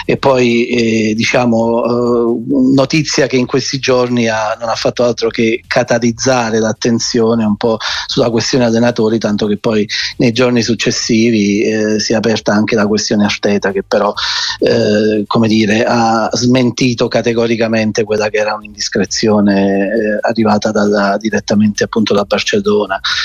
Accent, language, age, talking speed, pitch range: native, Italian, 30-49, 145 wpm, 110-130 Hz